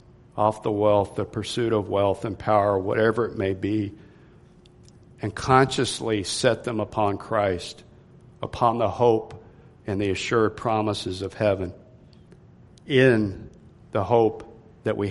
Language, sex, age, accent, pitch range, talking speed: English, male, 50-69, American, 105-120 Hz, 130 wpm